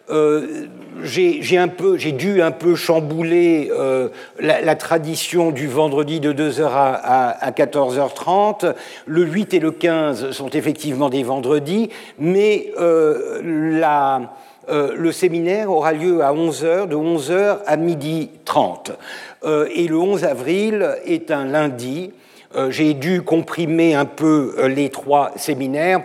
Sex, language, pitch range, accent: male, French, 145-170 Hz, French